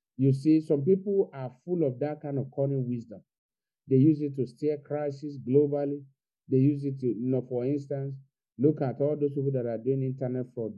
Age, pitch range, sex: 50-69, 130-150 Hz, male